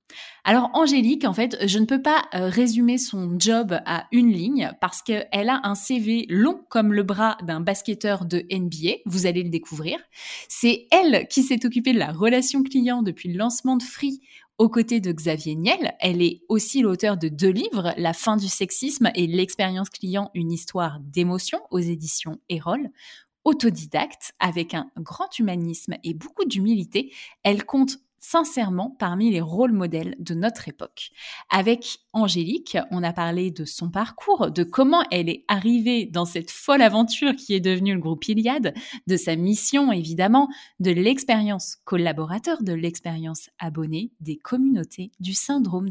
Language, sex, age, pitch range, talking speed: French, female, 20-39, 175-245 Hz, 165 wpm